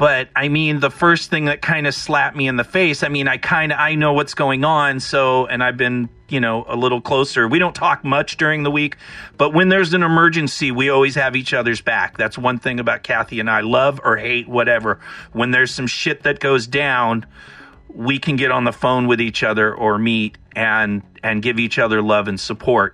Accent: American